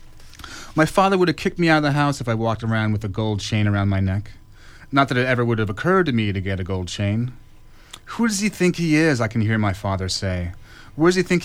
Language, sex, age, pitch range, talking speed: English, male, 30-49, 105-130 Hz, 265 wpm